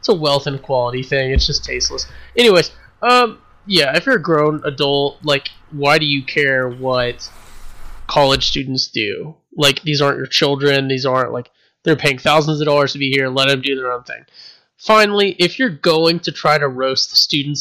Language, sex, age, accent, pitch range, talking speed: English, male, 20-39, American, 135-165 Hz, 200 wpm